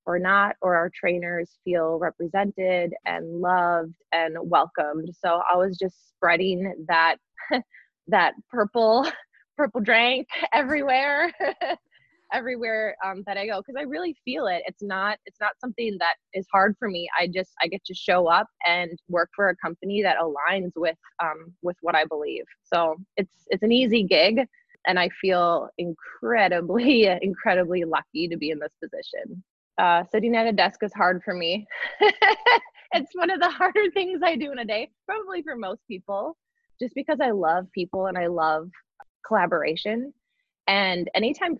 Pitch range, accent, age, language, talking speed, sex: 175-235 Hz, American, 20-39, English, 165 wpm, female